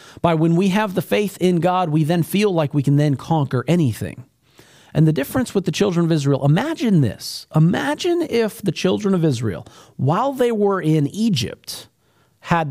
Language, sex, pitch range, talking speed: English, male, 130-190 Hz, 185 wpm